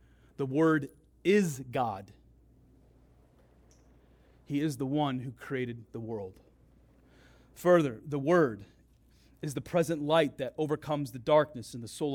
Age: 30-49